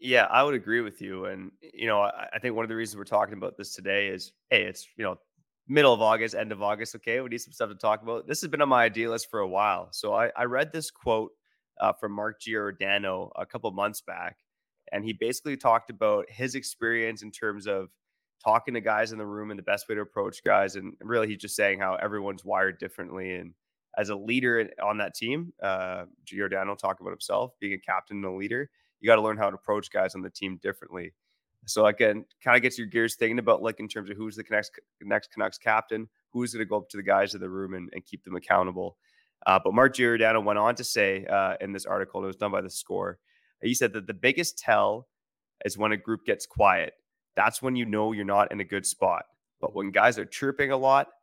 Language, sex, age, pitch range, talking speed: English, male, 20-39, 100-120 Hz, 240 wpm